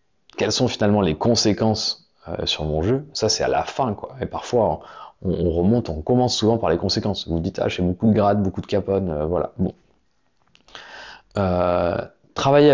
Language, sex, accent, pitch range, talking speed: French, male, French, 95-115 Hz, 195 wpm